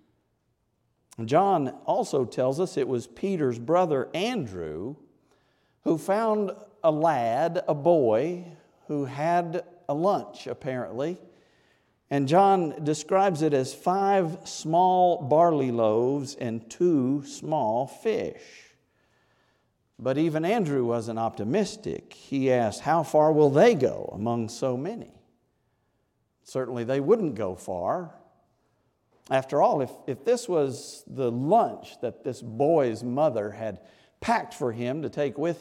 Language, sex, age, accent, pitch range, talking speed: English, male, 50-69, American, 130-180 Hz, 120 wpm